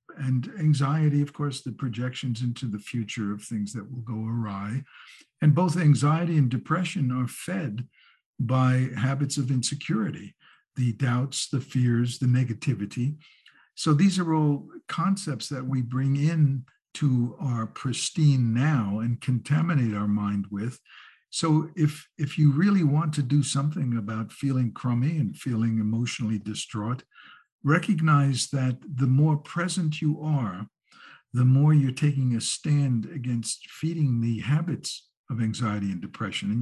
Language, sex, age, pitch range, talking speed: English, male, 60-79, 115-145 Hz, 145 wpm